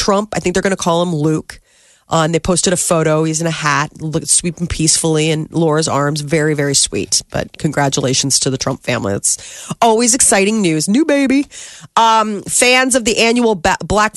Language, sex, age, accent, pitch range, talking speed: English, female, 30-49, American, 160-205 Hz, 190 wpm